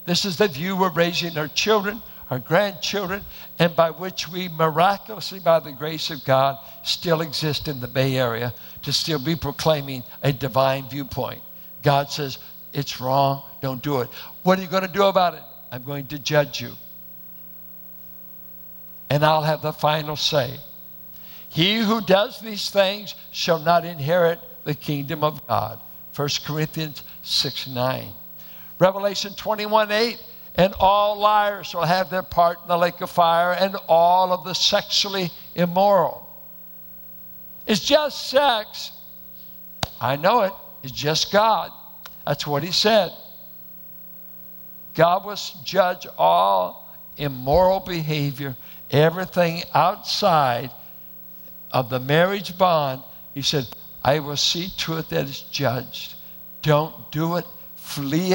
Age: 60-79